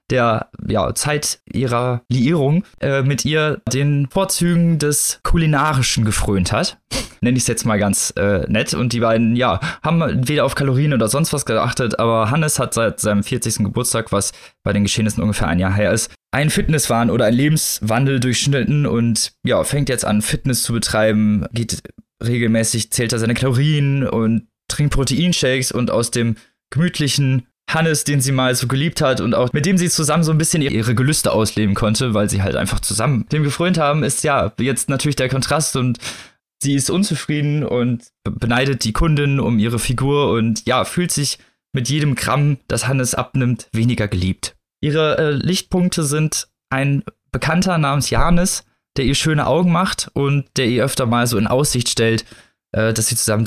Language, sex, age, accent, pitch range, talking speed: German, male, 20-39, German, 115-145 Hz, 180 wpm